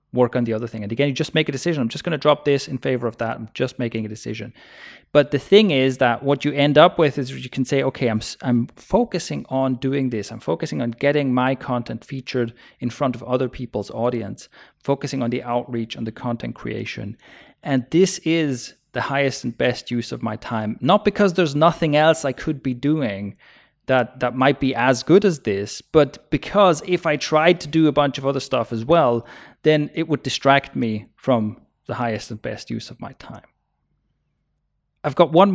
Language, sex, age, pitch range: English, male, 30-49, 120-150 Hz